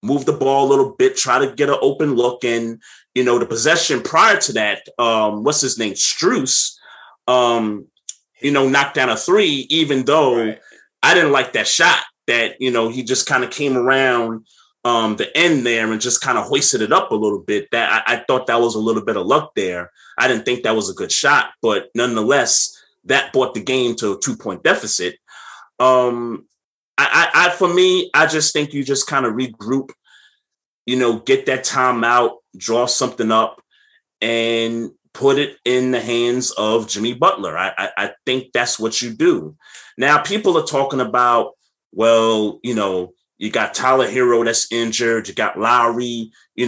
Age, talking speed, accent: 30-49, 195 wpm, American